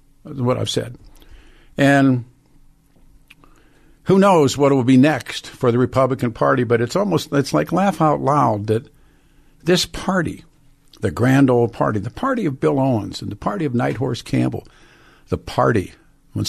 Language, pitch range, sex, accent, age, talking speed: English, 130-160 Hz, male, American, 50-69, 165 wpm